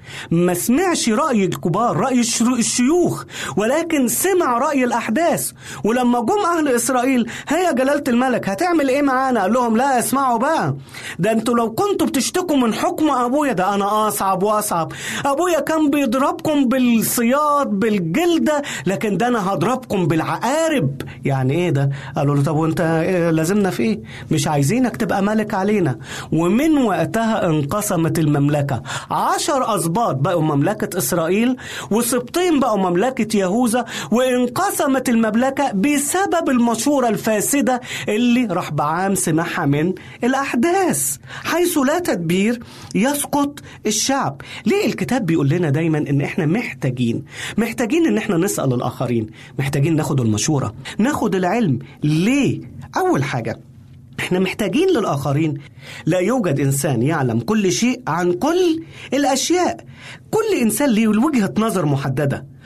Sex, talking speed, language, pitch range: male, 125 wpm, Arabic, 160-265 Hz